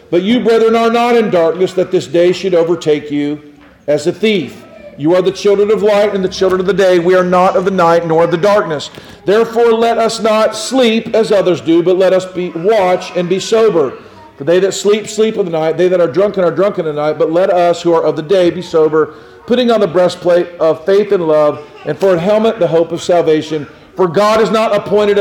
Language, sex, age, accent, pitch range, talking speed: English, male, 50-69, American, 155-200 Hz, 240 wpm